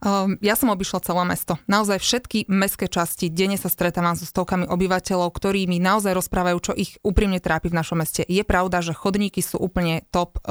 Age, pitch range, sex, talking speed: 20-39, 175-200 Hz, female, 190 wpm